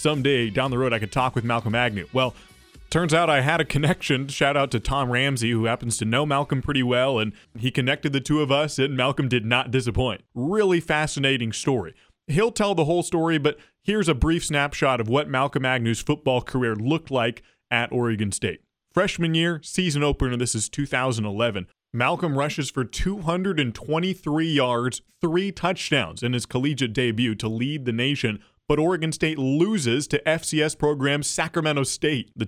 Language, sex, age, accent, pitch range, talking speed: English, male, 20-39, American, 120-150 Hz, 180 wpm